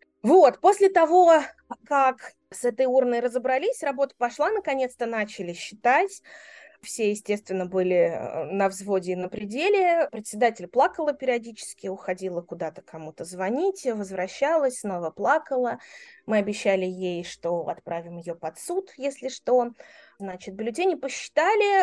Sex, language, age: female, Russian, 20-39